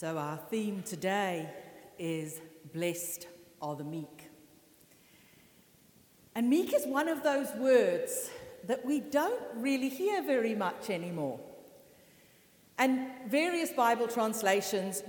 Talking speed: 110 wpm